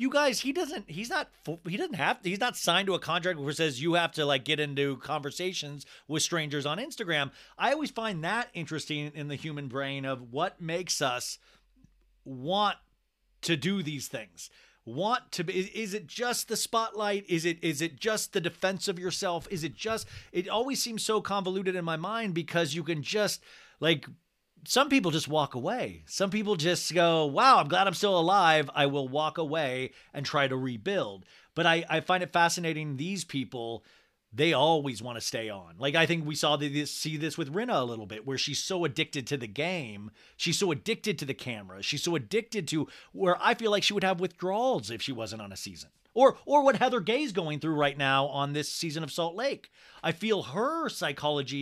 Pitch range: 145-195 Hz